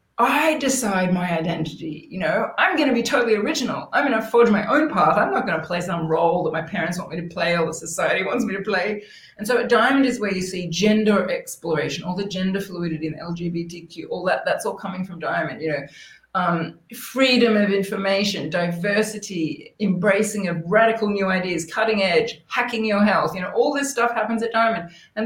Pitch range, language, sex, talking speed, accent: 175-230 Hz, English, female, 210 wpm, Australian